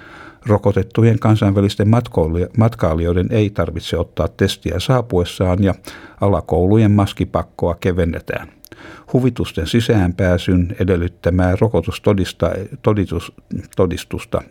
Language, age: Finnish, 60-79